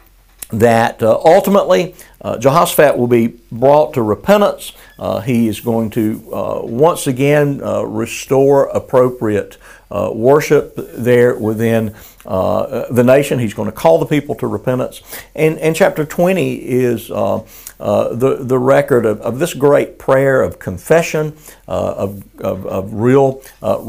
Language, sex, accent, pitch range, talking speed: English, male, American, 110-145 Hz, 150 wpm